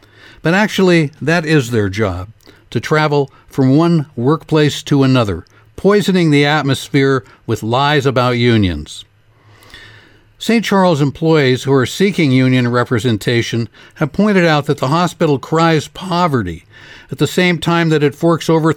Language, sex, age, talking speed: English, male, 60-79, 140 wpm